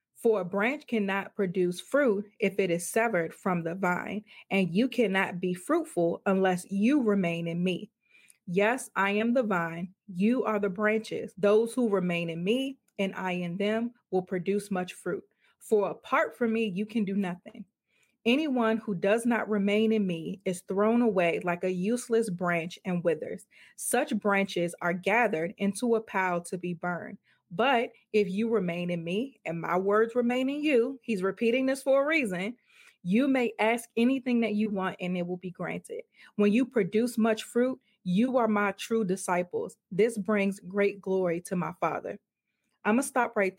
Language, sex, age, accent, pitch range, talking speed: English, female, 30-49, American, 185-235 Hz, 180 wpm